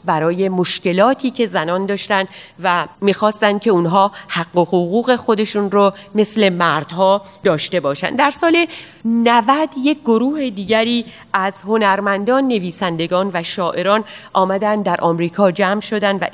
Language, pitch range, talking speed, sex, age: Persian, 185-230 Hz, 130 wpm, female, 40-59